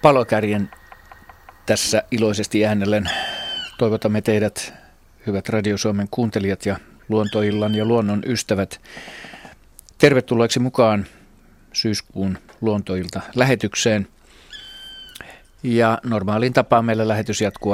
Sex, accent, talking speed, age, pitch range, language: male, native, 90 wpm, 40-59, 95-120 Hz, Finnish